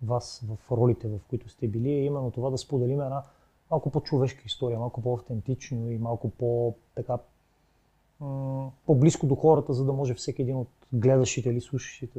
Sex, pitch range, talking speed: male, 120-140 Hz, 160 wpm